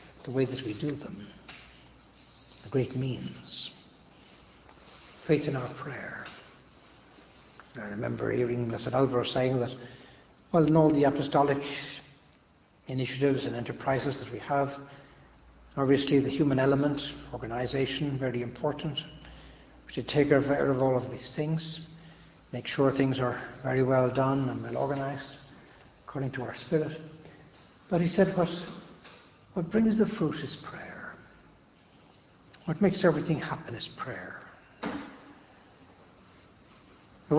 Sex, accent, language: male, Irish, English